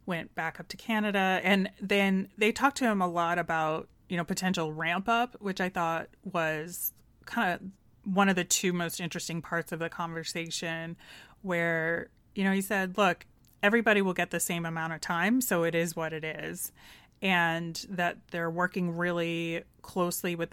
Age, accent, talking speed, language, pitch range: 30-49, American, 180 wpm, English, 165-190 Hz